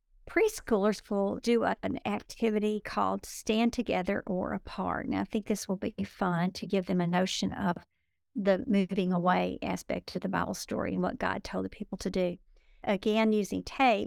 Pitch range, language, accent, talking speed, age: 185-220 Hz, English, American, 185 wpm, 50-69